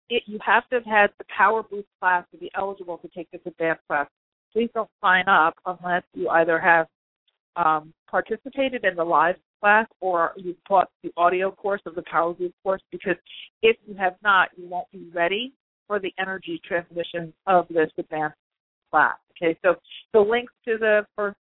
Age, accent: 40-59, American